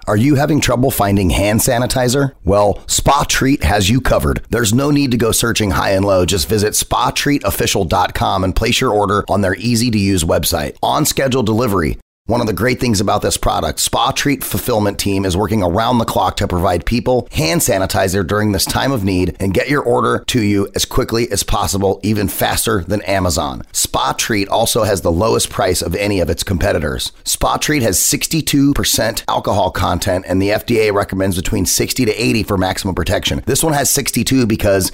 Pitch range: 95-120 Hz